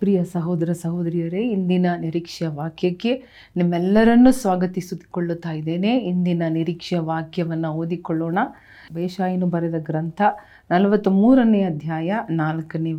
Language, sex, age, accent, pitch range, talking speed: Kannada, female, 40-59, native, 165-205 Hz, 90 wpm